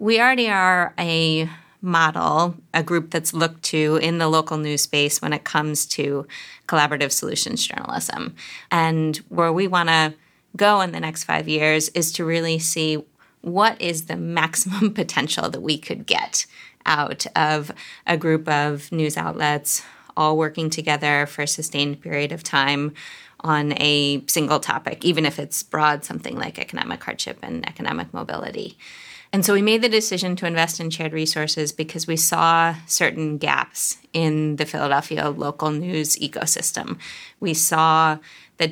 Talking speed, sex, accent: 160 wpm, female, American